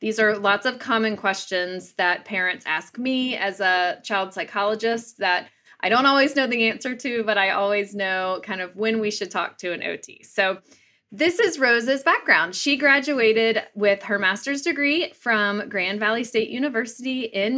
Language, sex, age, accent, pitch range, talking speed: English, female, 20-39, American, 185-240 Hz, 180 wpm